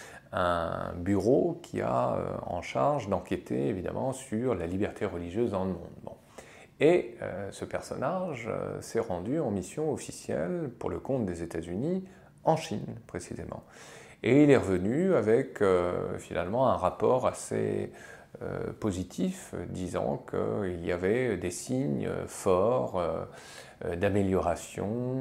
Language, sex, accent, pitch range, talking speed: French, male, French, 90-130 Hz, 130 wpm